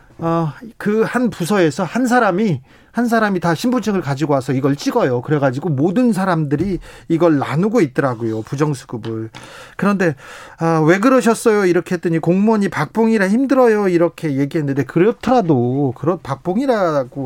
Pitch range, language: 140-190 Hz, Korean